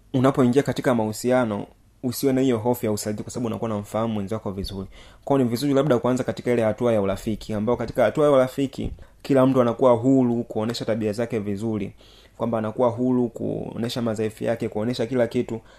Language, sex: Swahili, male